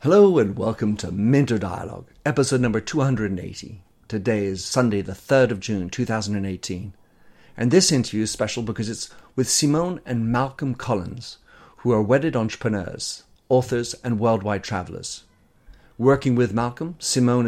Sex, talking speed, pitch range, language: male, 140 wpm, 105-130 Hz, English